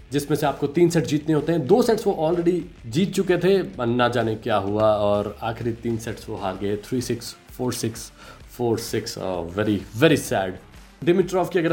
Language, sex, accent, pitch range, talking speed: Hindi, male, native, 120-165 Hz, 195 wpm